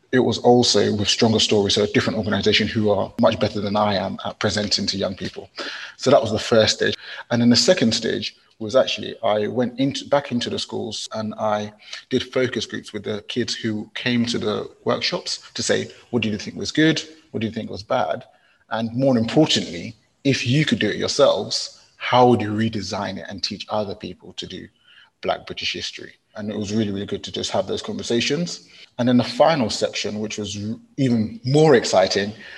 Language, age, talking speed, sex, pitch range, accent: English, 30-49, 205 wpm, male, 105-125 Hz, British